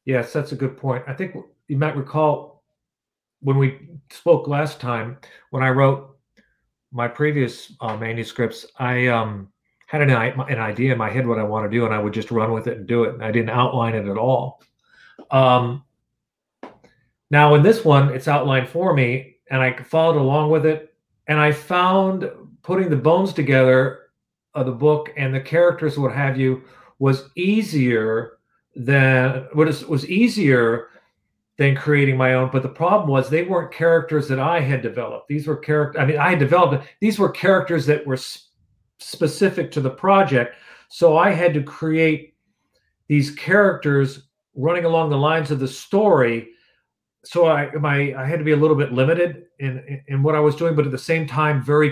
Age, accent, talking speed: 40-59, American, 185 wpm